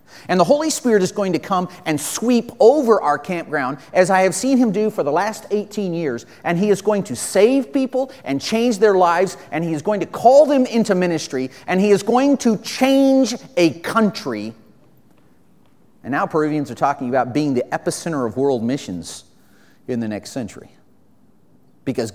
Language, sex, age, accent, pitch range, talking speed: English, male, 40-59, American, 135-205 Hz, 185 wpm